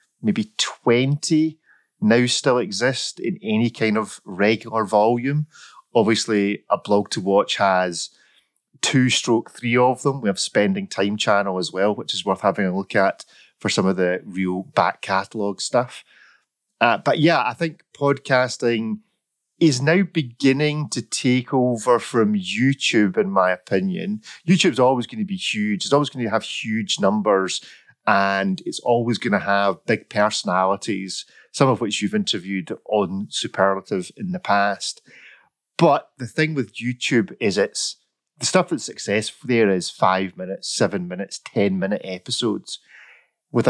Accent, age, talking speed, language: British, 30-49, 155 wpm, English